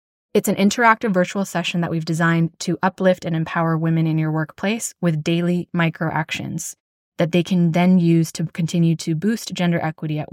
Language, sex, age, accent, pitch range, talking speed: English, female, 20-39, American, 165-195 Hz, 185 wpm